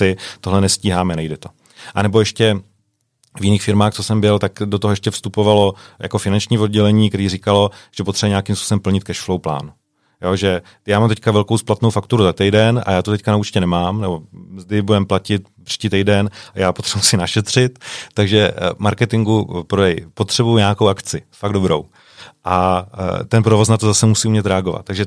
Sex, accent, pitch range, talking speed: male, native, 95-110 Hz, 175 wpm